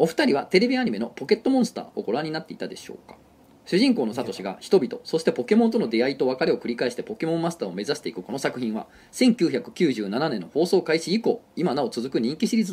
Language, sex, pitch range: Japanese, male, 155-235 Hz